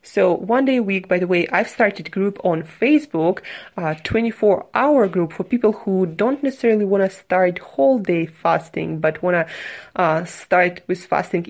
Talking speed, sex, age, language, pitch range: 185 wpm, female, 20-39, English, 165-195 Hz